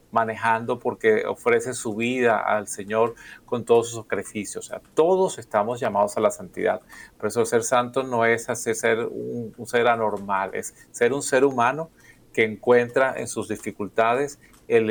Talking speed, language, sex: 170 wpm, Spanish, male